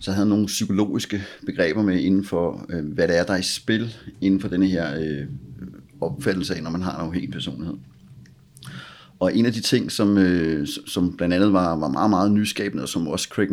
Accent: native